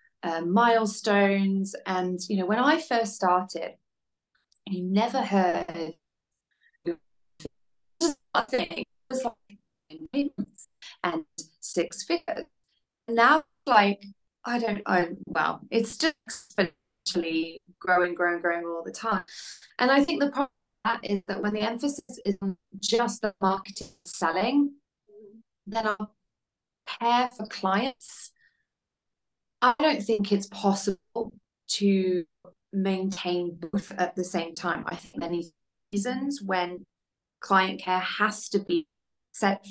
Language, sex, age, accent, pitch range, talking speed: English, female, 20-39, British, 180-235 Hz, 110 wpm